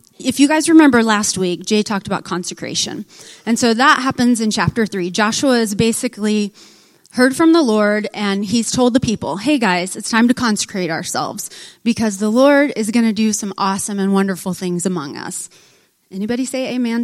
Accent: American